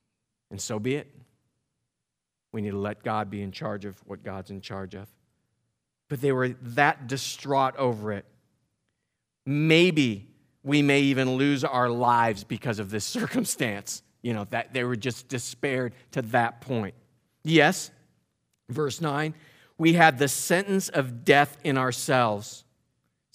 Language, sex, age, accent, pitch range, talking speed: English, male, 40-59, American, 115-145 Hz, 150 wpm